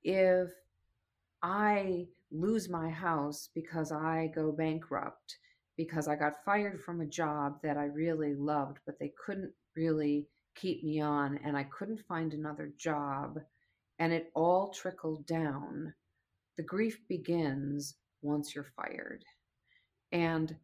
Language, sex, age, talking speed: English, female, 40-59, 130 wpm